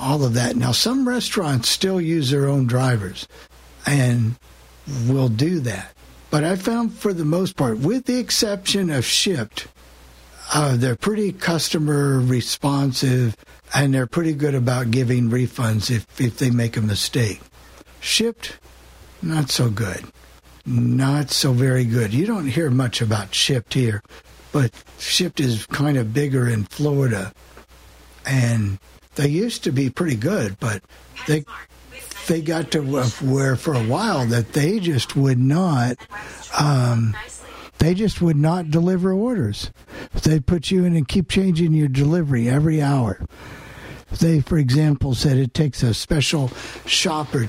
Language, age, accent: English, 60-79, American